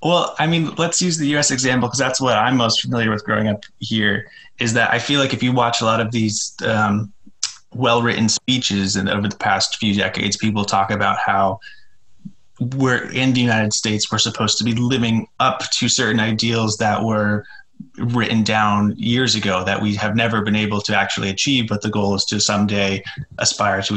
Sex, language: male, English